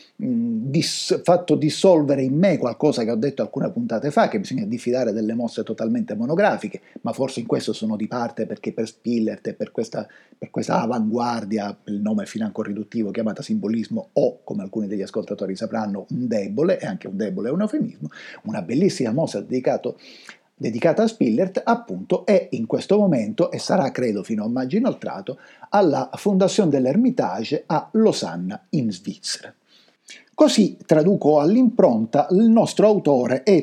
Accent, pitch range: native, 110-185 Hz